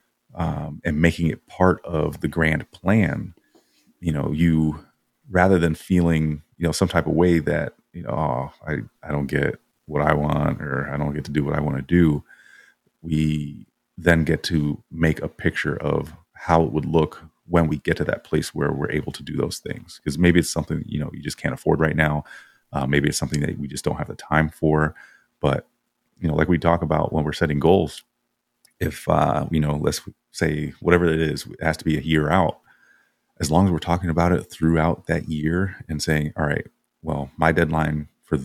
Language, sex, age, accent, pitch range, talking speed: English, male, 30-49, American, 75-85 Hz, 210 wpm